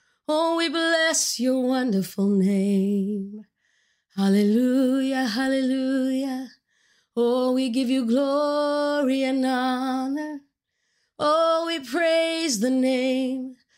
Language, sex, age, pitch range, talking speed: English, female, 30-49, 260-330 Hz, 85 wpm